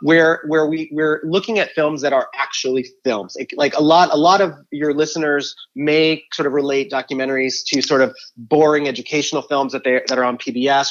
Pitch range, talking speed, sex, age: 130-155 Hz, 205 wpm, male, 30-49